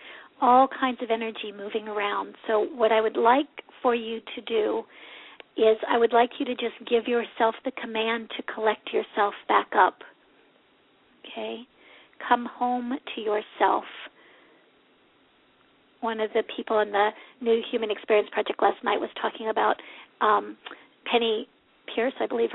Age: 50-69